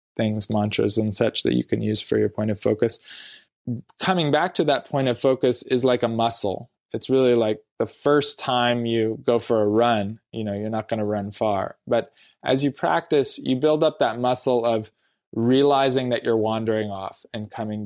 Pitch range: 110-125 Hz